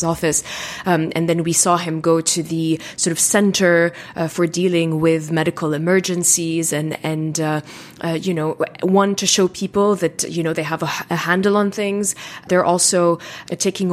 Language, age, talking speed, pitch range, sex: English, 20-39, 185 wpm, 165-185 Hz, female